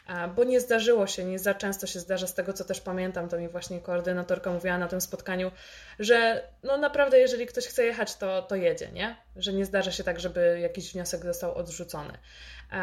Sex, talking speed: female, 200 wpm